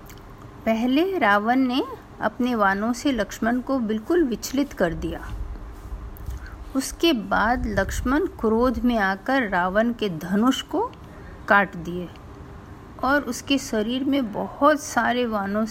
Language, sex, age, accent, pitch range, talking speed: Hindi, female, 50-69, native, 180-265 Hz, 120 wpm